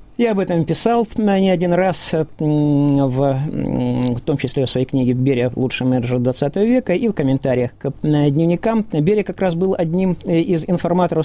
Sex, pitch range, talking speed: male, 135-175 Hz, 170 wpm